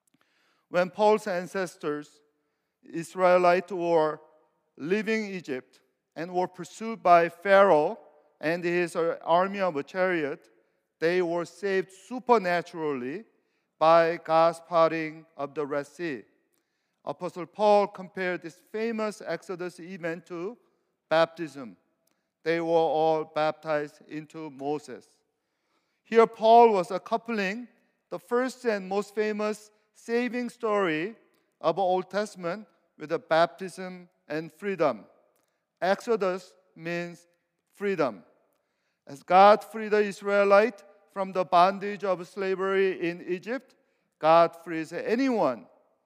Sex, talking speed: male, 105 wpm